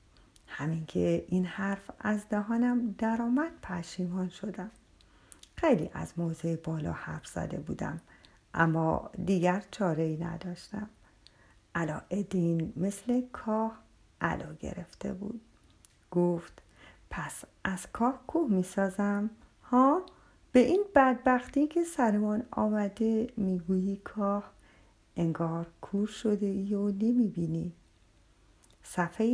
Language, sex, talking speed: Persian, female, 100 wpm